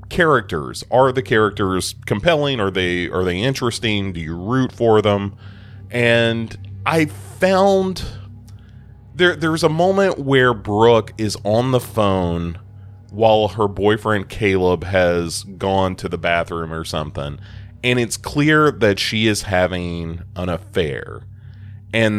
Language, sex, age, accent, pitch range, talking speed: English, male, 30-49, American, 95-115 Hz, 135 wpm